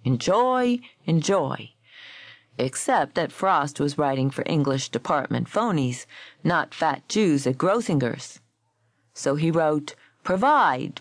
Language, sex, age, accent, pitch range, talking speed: English, female, 40-59, American, 140-215 Hz, 110 wpm